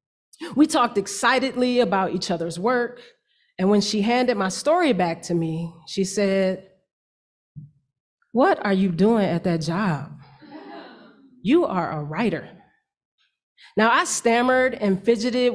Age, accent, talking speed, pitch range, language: 30-49, American, 130 wpm, 180-235 Hz, English